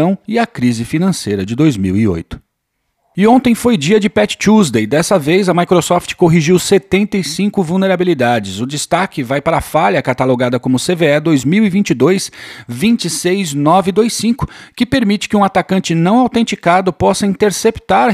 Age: 40-59